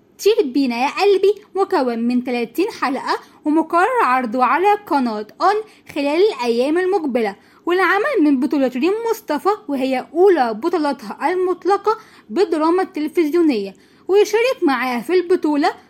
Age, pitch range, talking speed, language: 20-39, 275-385 Hz, 115 wpm, Arabic